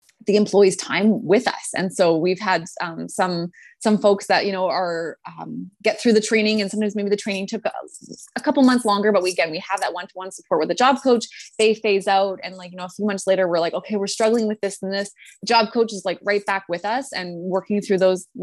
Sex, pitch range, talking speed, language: female, 175-205 Hz, 250 wpm, English